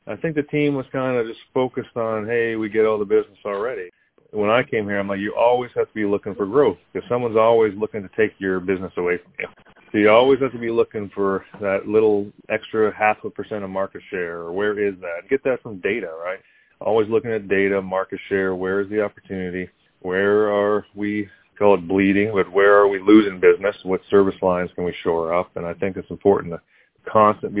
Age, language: 30-49, English